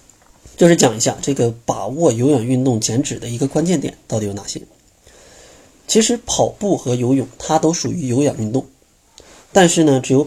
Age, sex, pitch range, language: 20-39, male, 115-150 Hz, Chinese